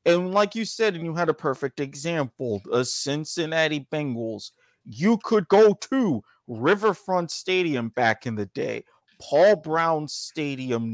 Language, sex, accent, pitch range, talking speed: English, male, American, 130-185 Hz, 145 wpm